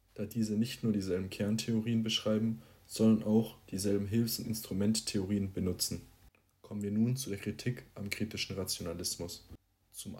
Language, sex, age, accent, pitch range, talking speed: German, male, 20-39, German, 100-110 Hz, 140 wpm